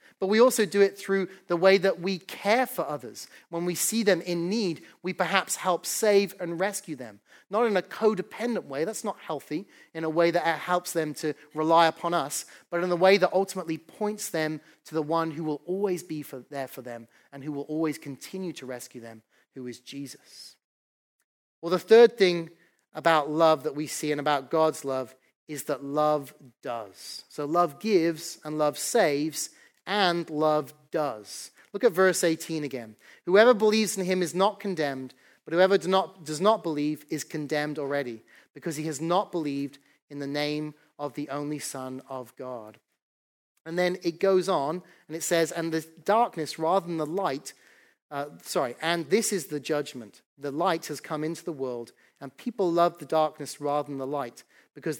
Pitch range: 145-185 Hz